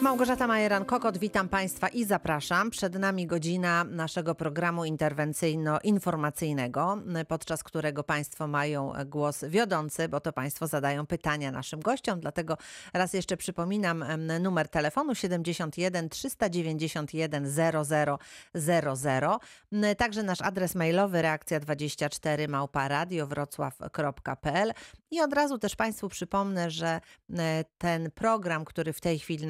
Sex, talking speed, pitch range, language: female, 110 wpm, 150-185 Hz, Polish